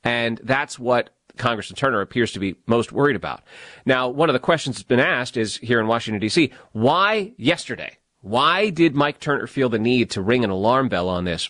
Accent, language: American, English